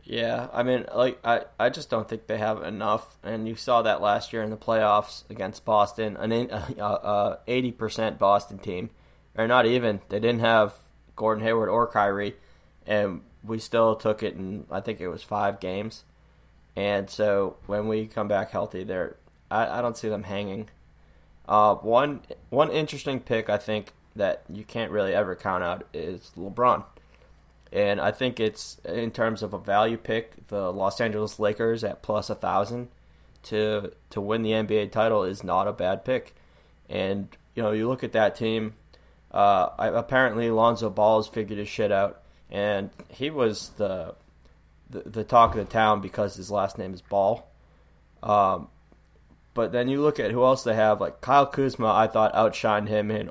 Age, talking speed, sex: 20-39, 180 wpm, male